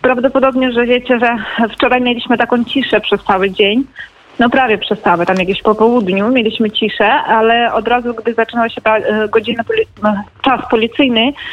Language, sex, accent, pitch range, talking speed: Polish, female, native, 220-245 Hz, 155 wpm